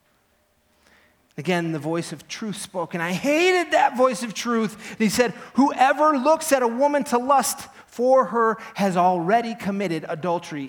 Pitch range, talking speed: 155-220 Hz, 155 wpm